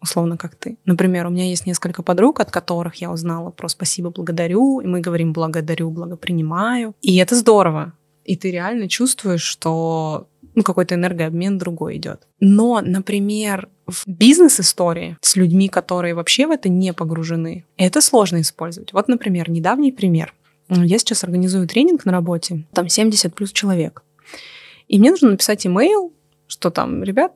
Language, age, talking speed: Russian, 20-39, 155 wpm